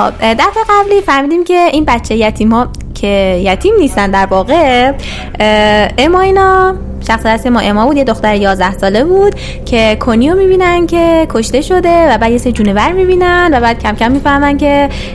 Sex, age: female, 20-39